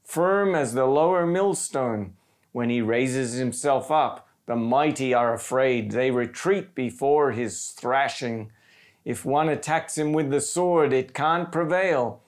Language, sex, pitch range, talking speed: English, male, 125-160 Hz, 140 wpm